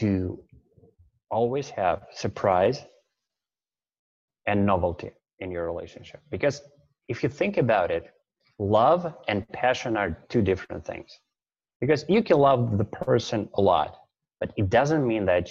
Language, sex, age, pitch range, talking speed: English, male, 30-49, 95-130 Hz, 135 wpm